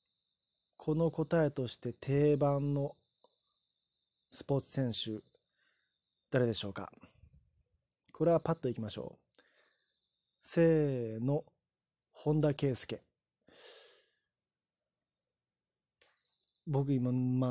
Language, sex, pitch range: Japanese, male, 125-165 Hz